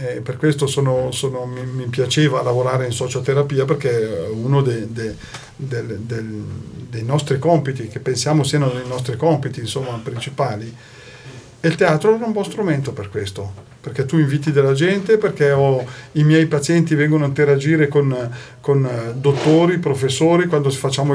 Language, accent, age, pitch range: Italian, native, 40-59, 125-150 Hz